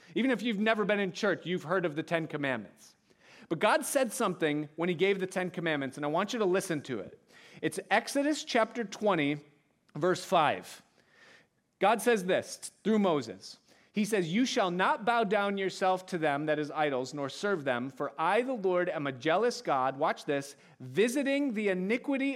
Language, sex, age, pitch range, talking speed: English, male, 40-59, 160-225 Hz, 190 wpm